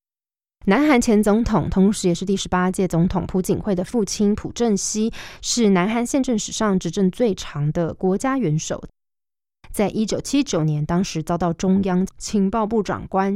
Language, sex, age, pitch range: Chinese, female, 20-39, 175-220 Hz